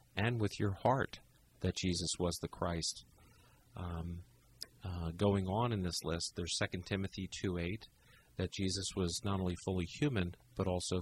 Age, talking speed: 40-59, 165 wpm